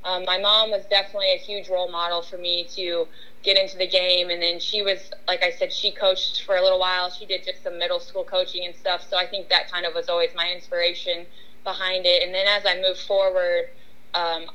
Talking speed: 235 wpm